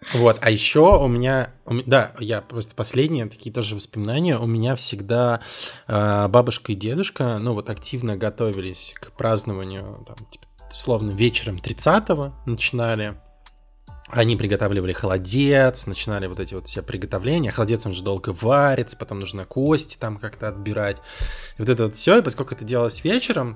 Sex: male